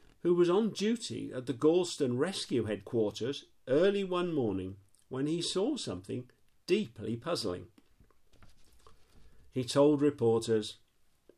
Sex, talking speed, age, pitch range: male, 110 wpm, 50-69, 115-165 Hz